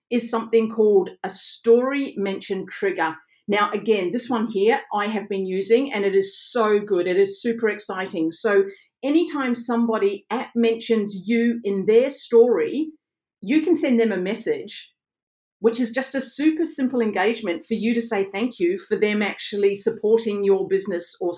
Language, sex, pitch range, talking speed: English, female, 195-245 Hz, 170 wpm